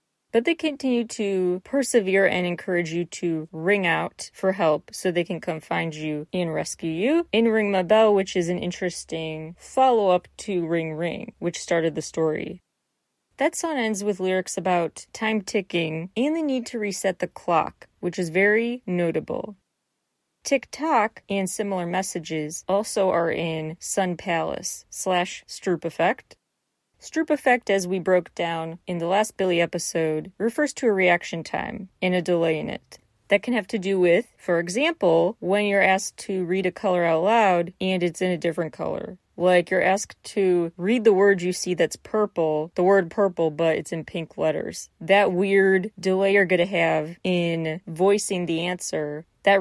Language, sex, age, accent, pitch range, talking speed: English, female, 30-49, American, 170-205 Hz, 175 wpm